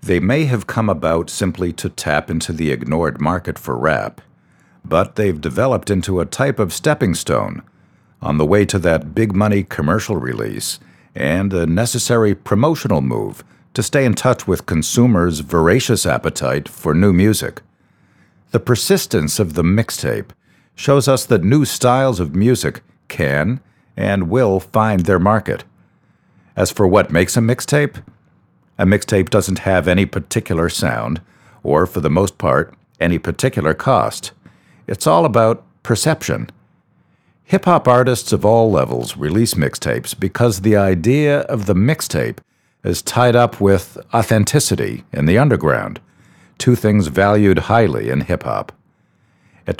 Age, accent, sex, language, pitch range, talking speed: 50-69, American, male, English, 85-115 Hz, 140 wpm